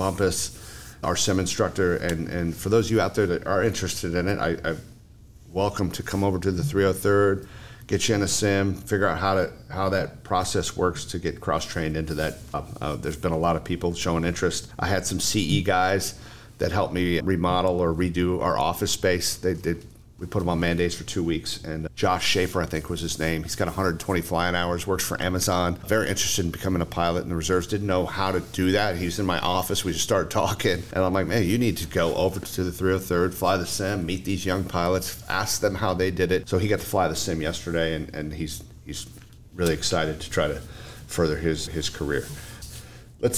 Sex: male